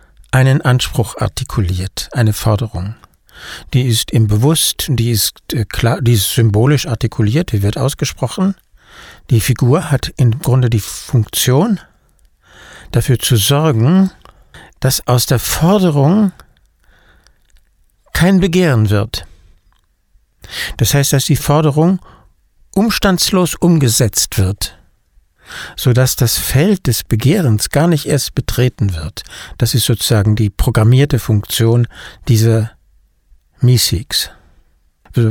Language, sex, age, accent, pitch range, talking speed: German, male, 60-79, German, 105-140 Hz, 110 wpm